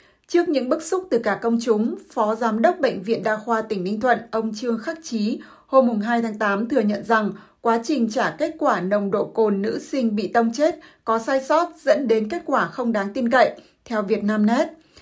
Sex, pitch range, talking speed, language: female, 215-255 Hz, 225 wpm, Vietnamese